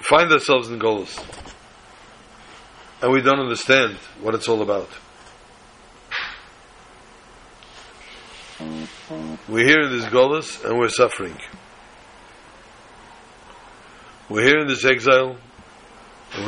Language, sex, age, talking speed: English, male, 60-79, 95 wpm